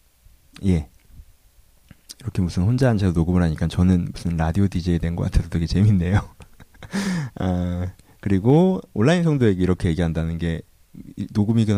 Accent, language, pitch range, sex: native, Korean, 85-110 Hz, male